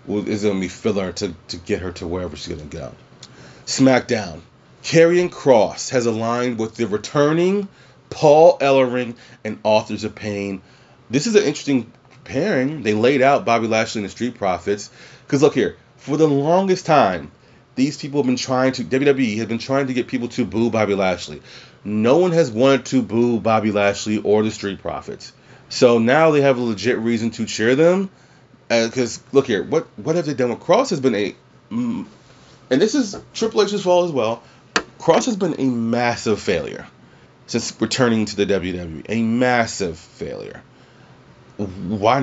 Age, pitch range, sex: 30-49, 105-130 Hz, male